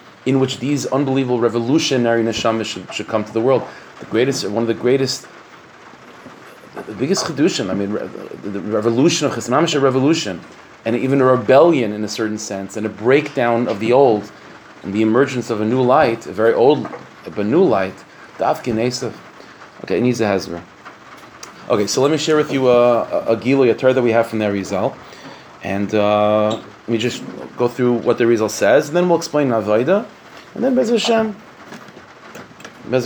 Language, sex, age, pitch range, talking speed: English, male, 30-49, 110-135 Hz, 190 wpm